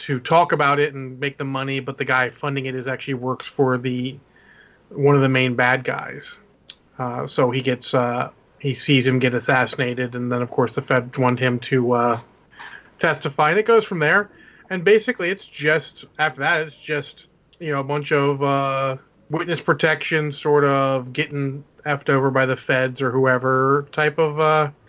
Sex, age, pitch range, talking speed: male, 30-49, 130-145 Hz, 190 wpm